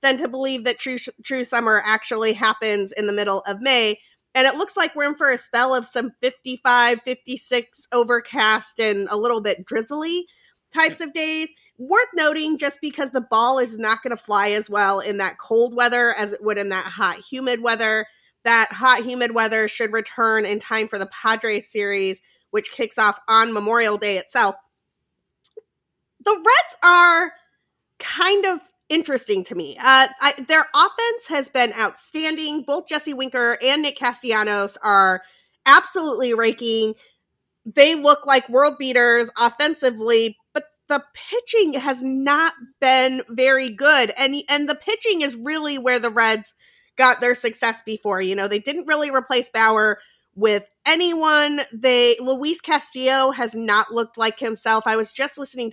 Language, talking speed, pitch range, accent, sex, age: English, 165 wpm, 220-290 Hz, American, female, 30-49